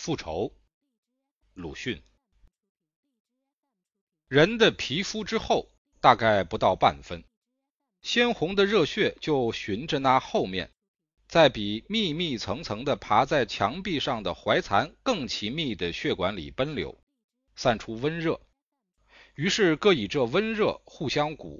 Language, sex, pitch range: Chinese, male, 125-210 Hz